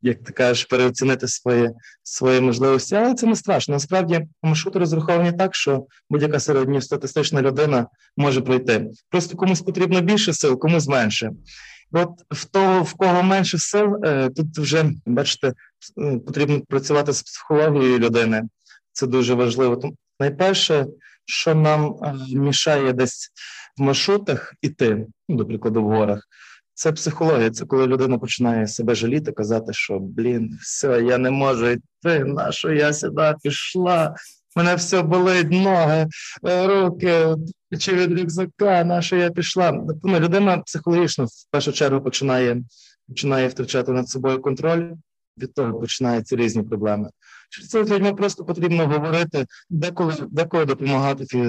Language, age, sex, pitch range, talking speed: Ukrainian, 20-39, male, 125-175 Hz, 140 wpm